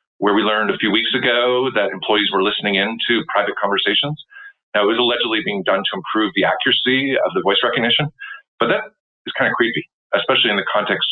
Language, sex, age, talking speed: English, male, 40-59, 210 wpm